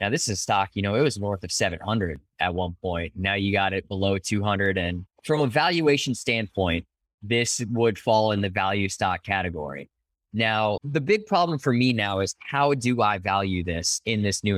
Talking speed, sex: 205 wpm, male